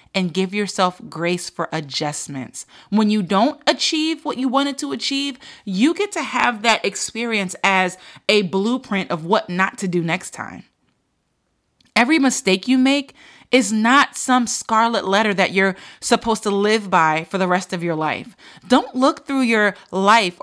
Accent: American